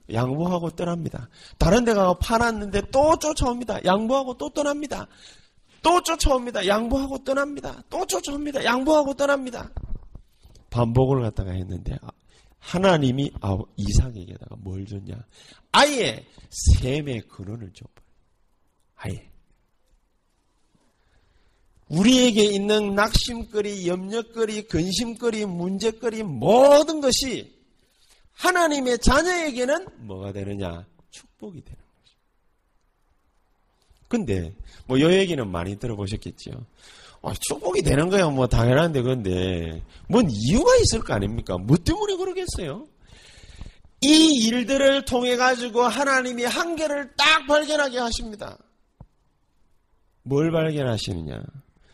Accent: native